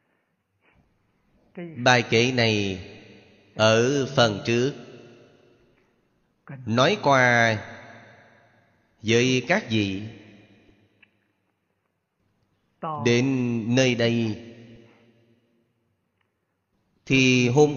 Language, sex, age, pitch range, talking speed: Vietnamese, male, 30-49, 105-130 Hz, 55 wpm